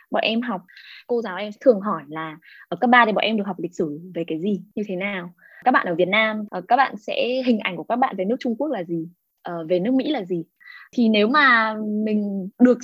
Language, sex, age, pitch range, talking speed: Vietnamese, female, 10-29, 185-260 Hz, 255 wpm